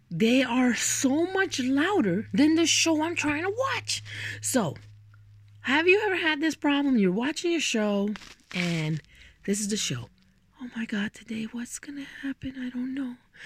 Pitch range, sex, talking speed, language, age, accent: 175-290 Hz, female, 175 wpm, English, 20-39, American